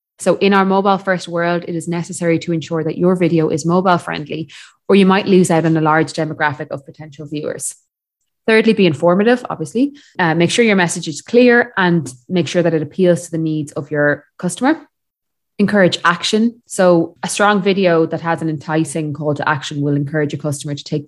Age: 20-39